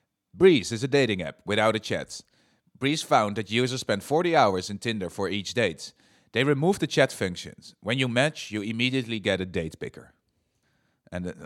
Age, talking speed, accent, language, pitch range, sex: 30-49, 185 wpm, Dutch, English, 95-125 Hz, male